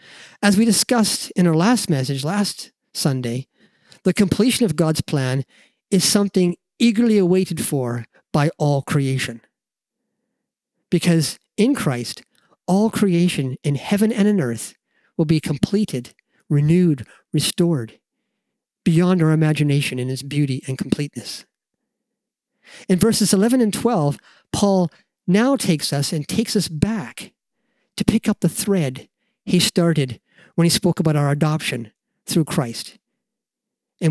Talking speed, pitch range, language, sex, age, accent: 130 wpm, 155-215 Hz, English, male, 50-69, American